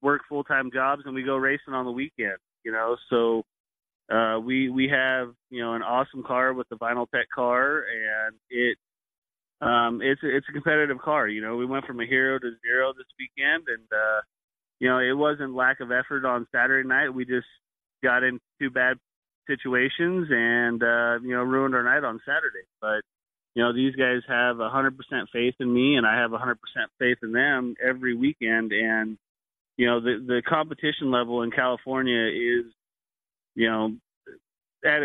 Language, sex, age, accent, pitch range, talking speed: English, male, 30-49, American, 120-135 Hz, 185 wpm